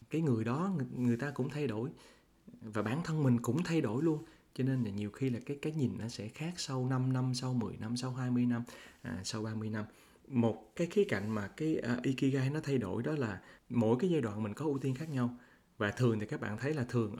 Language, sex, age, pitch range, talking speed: Vietnamese, male, 20-39, 105-130 Hz, 250 wpm